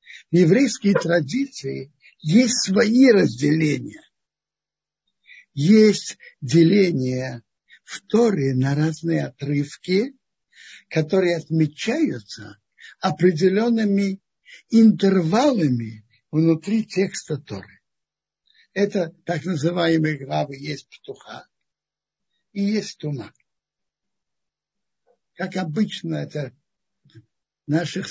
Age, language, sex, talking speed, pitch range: 60-79, Russian, male, 75 wpm, 150-200 Hz